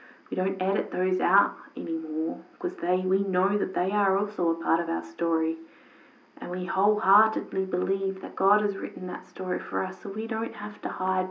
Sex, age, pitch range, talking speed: female, 30-49, 180-215 Hz, 195 wpm